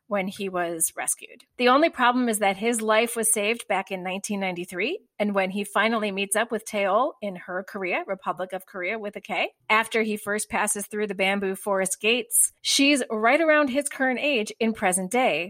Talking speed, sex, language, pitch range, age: 195 wpm, female, English, 195-245 Hz, 30-49